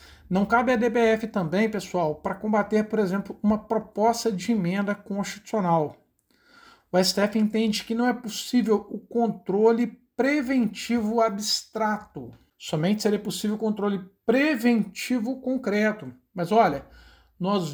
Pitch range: 185-225 Hz